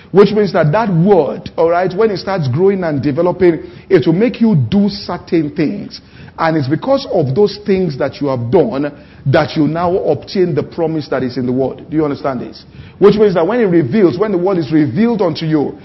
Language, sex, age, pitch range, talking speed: English, male, 50-69, 155-210 Hz, 215 wpm